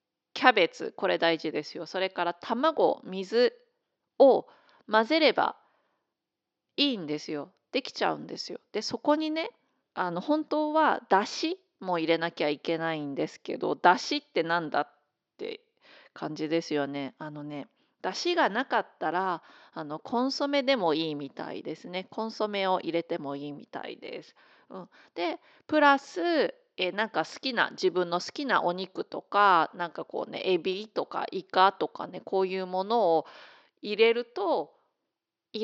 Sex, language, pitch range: female, Japanese, 170-285 Hz